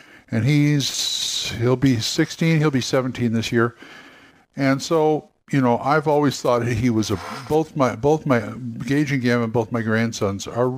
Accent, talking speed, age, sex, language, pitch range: American, 175 wpm, 60-79, male, English, 105-150 Hz